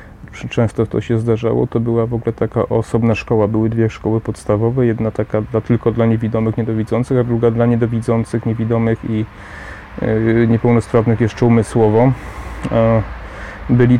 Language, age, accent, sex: Polish, 30-49, native, male